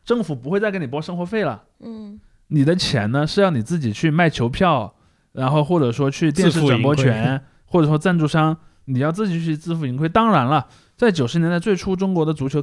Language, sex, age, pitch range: Chinese, male, 20-39, 130-190 Hz